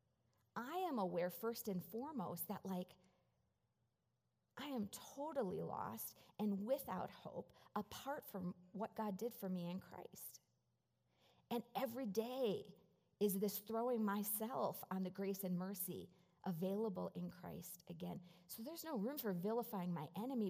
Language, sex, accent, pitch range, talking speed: English, female, American, 175-225 Hz, 140 wpm